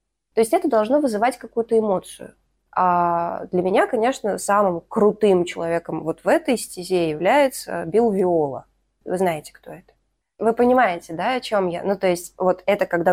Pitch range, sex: 170-230 Hz, female